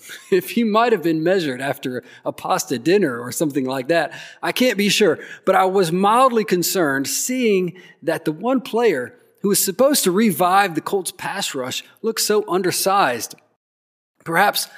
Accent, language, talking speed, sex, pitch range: American, English, 165 wpm, male, 150-210 Hz